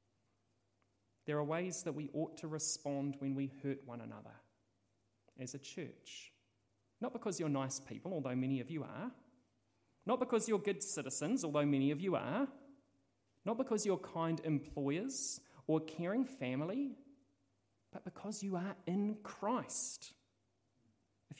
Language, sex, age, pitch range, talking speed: English, male, 30-49, 125-180 Hz, 145 wpm